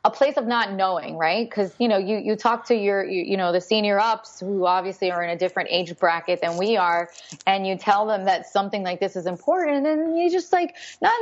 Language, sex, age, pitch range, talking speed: English, female, 20-39, 185-245 Hz, 250 wpm